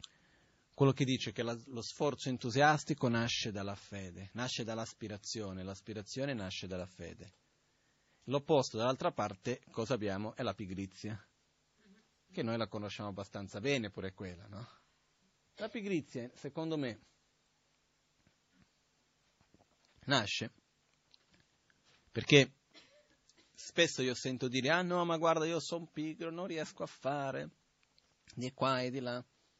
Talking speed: 120 wpm